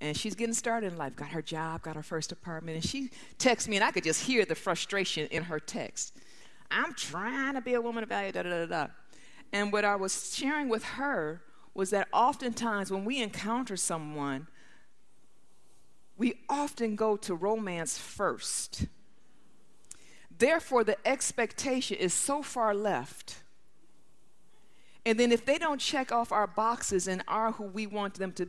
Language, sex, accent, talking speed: English, female, American, 175 wpm